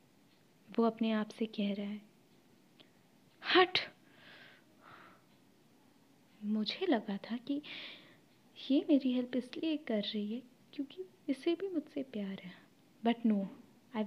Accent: native